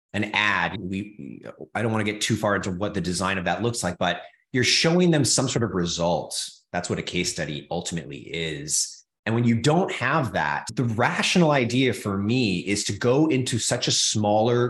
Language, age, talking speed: English, 30-49, 210 wpm